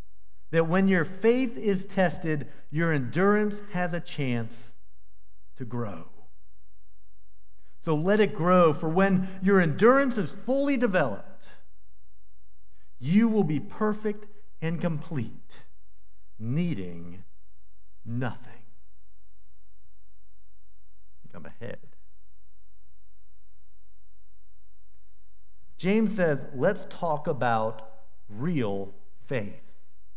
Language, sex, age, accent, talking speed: English, male, 50-69, American, 80 wpm